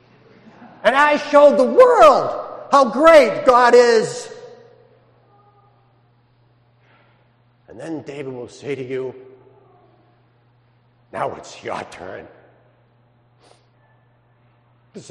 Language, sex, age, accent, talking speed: English, male, 50-69, American, 85 wpm